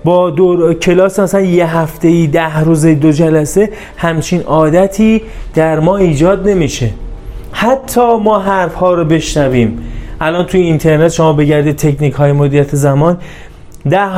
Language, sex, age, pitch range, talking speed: Persian, male, 30-49, 140-185 Hz, 140 wpm